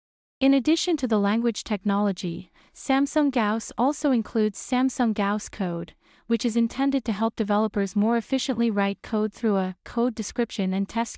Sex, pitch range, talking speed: female, 200-240 Hz, 155 wpm